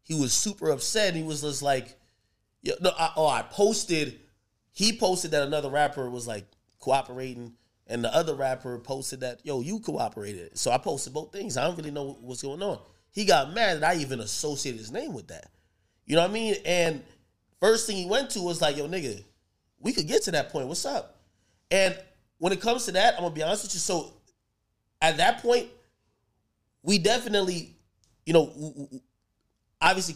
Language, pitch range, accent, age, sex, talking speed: English, 120-185 Hz, American, 30-49, male, 190 wpm